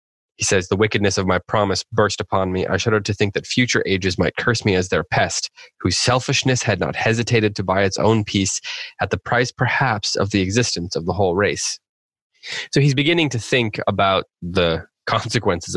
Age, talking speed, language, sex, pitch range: 20-39, 200 wpm, English, male, 95-125 Hz